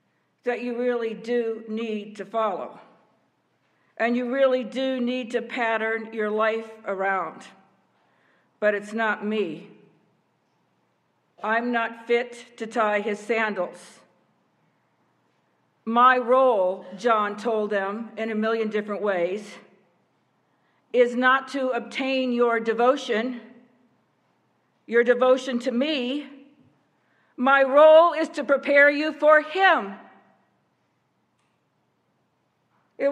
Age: 50-69